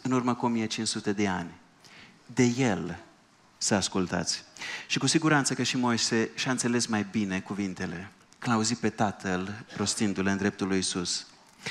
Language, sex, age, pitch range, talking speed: Romanian, male, 30-49, 105-135 Hz, 155 wpm